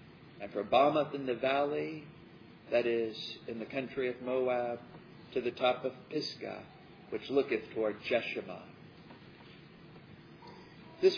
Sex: male